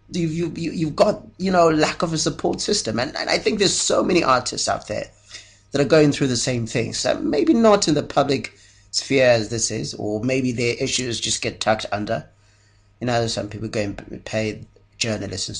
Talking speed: 210 wpm